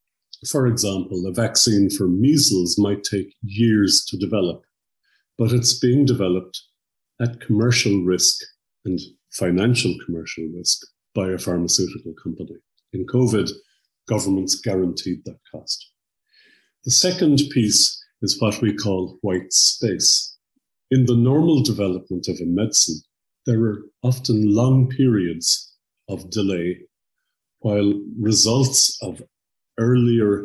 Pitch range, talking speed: 90-120 Hz, 115 wpm